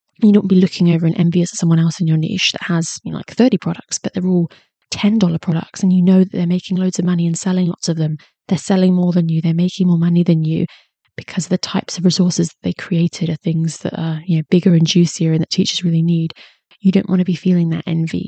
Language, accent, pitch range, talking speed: English, British, 165-190 Hz, 270 wpm